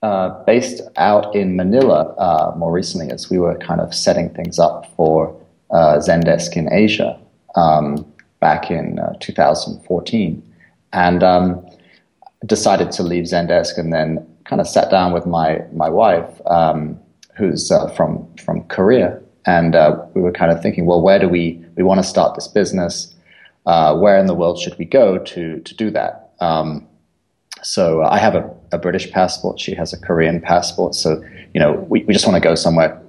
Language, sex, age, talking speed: English, male, 30-49, 190 wpm